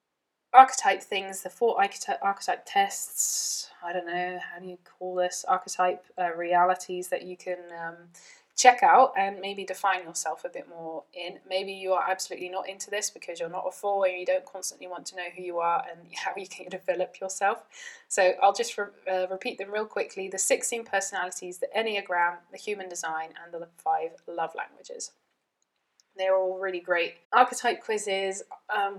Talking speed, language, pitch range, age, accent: 180 wpm, English, 180-220 Hz, 20-39, British